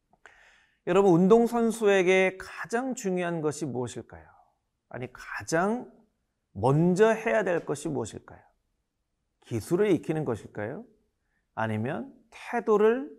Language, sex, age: Korean, male, 40-59